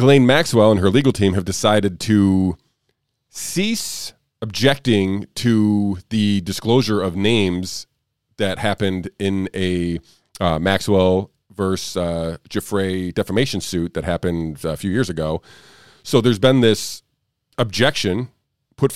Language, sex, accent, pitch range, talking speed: English, male, American, 95-125 Hz, 125 wpm